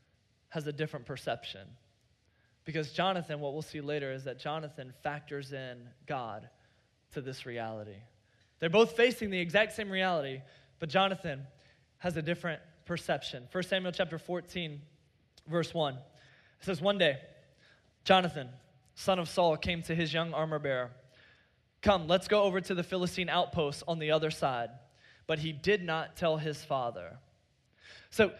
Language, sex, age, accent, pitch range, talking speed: English, male, 20-39, American, 145-195 Hz, 150 wpm